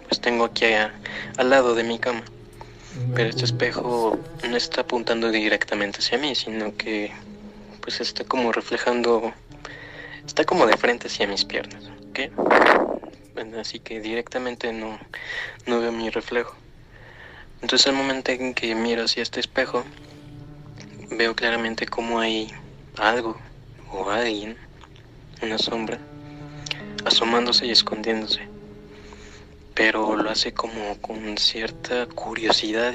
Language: Spanish